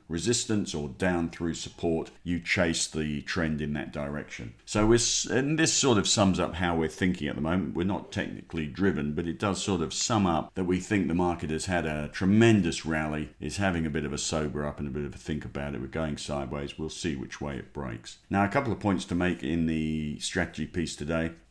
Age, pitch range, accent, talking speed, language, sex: 50-69, 80-95 Hz, British, 235 wpm, English, male